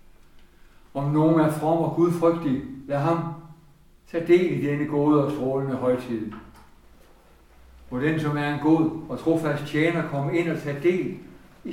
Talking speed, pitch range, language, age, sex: 160 wpm, 140-170 Hz, Danish, 60-79, male